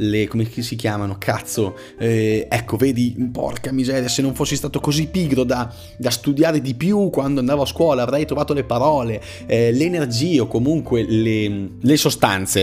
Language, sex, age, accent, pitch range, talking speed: Italian, male, 30-49, native, 100-140 Hz, 170 wpm